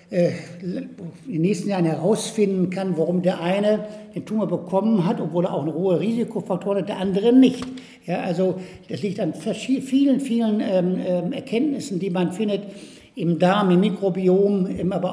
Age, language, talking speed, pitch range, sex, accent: 60-79, German, 165 wpm, 175-205 Hz, male, German